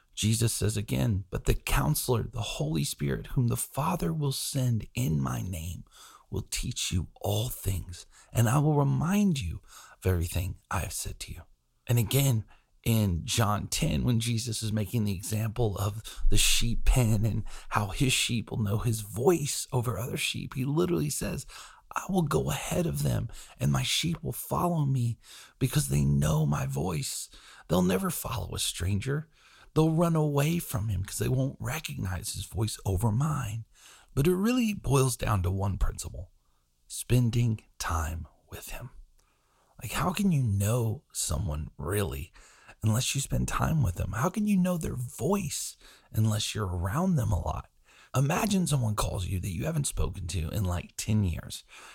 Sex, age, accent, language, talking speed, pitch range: male, 40-59, American, English, 170 wpm, 95-140 Hz